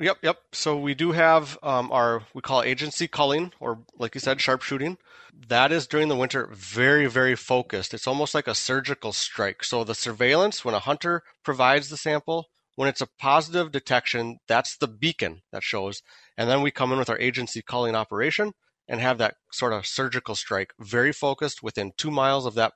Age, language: 30-49, English